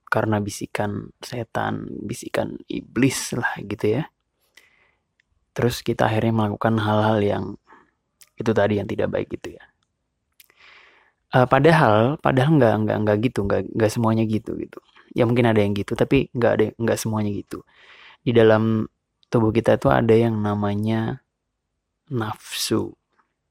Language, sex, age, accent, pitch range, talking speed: Indonesian, male, 20-39, native, 105-120 Hz, 135 wpm